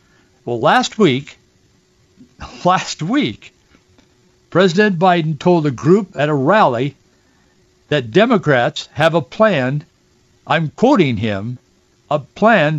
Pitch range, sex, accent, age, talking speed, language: 145-185 Hz, male, American, 60-79, 110 wpm, English